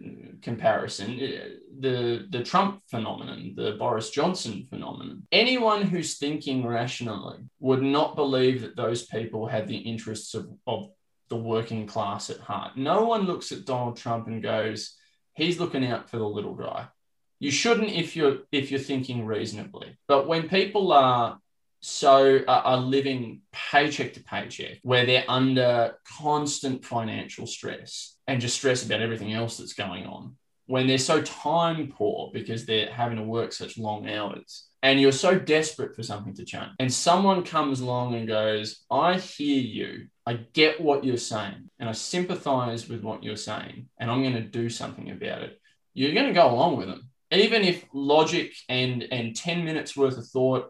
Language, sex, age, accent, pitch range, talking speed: English, male, 20-39, Australian, 115-145 Hz, 170 wpm